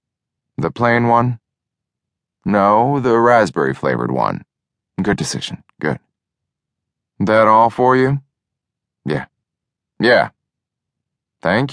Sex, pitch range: male, 90-130 Hz